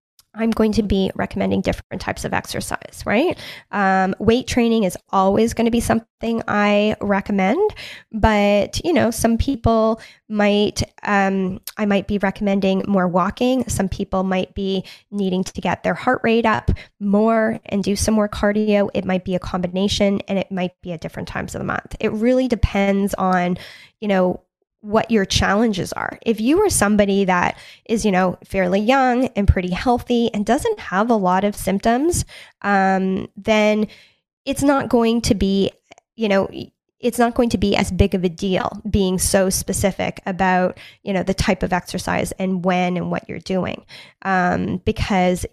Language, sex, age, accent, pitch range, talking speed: English, female, 10-29, American, 185-220 Hz, 175 wpm